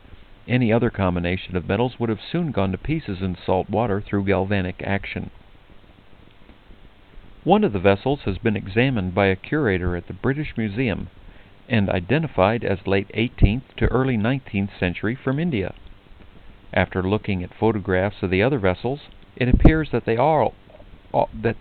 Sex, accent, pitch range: male, American, 95-115 Hz